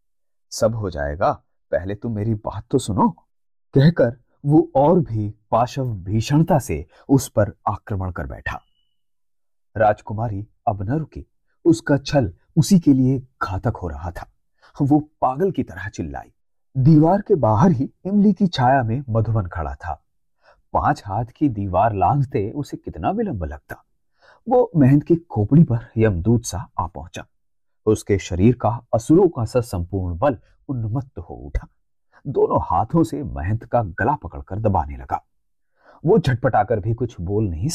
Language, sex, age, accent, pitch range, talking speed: Hindi, male, 30-49, native, 100-145 Hz, 150 wpm